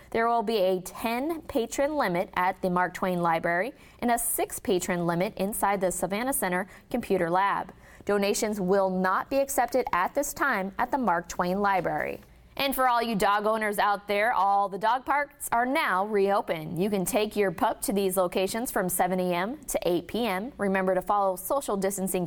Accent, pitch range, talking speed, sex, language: American, 185-235 Hz, 185 wpm, female, English